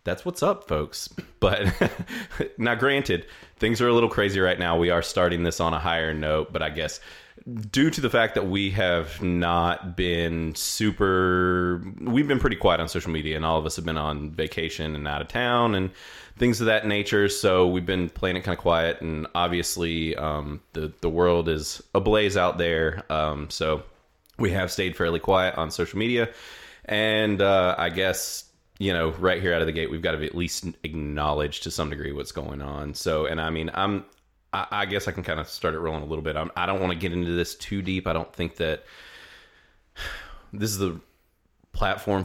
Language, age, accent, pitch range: English, 30-49, American, 80-100 Hz